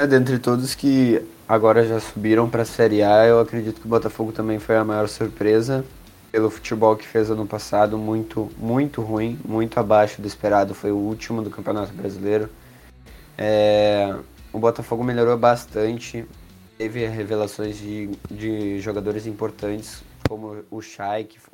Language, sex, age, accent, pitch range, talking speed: Portuguese, male, 20-39, Brazilian, 105-120 Hz, 155 wpm